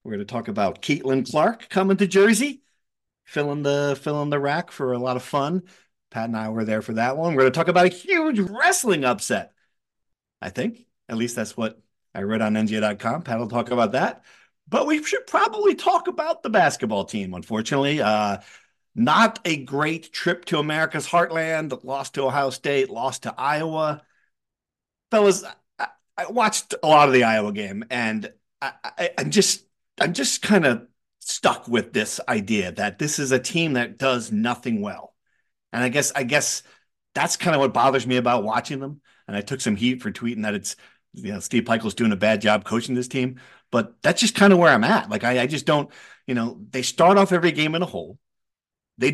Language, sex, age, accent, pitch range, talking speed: English, male, 50-69, American, 120-180 Hz, 205 wpm